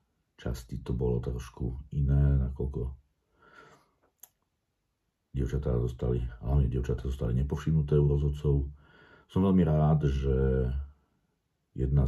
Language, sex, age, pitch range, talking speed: Slovak, male, 50-69, 65-75 Hz, 90 wpm